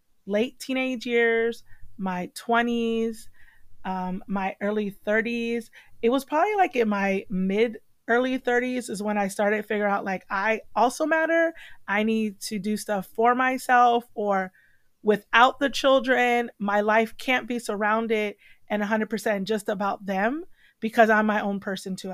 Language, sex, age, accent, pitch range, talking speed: English, female, 30-49, American, 205-250 Hz, 155 wpm